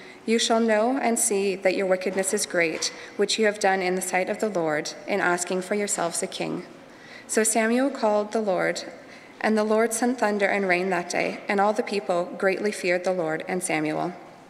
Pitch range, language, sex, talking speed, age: 185-225 Hz, English, female, 205 wpm, 20-39